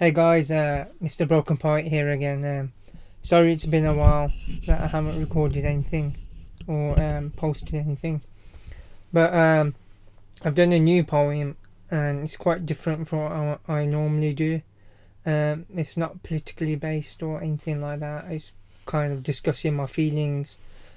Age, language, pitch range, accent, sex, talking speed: 20-39, English, 135-160 Hz, British, male, 155 wpm